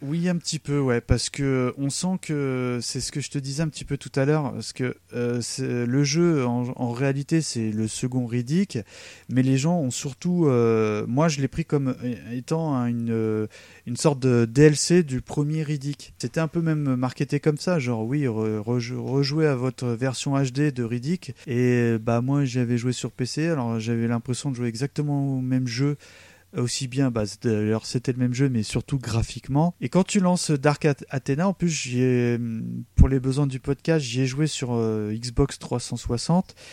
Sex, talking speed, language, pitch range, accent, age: male, 200 wpm, French, 120-150 Hz, French, 30-49